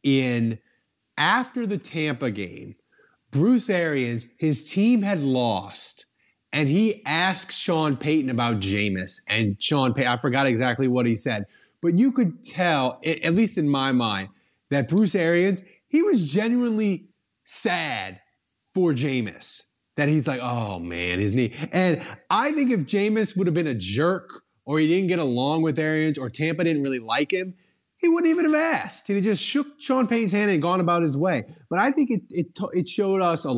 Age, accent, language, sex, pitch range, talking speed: 30-49, American, English, male, 135-205 Hz, 180 wpm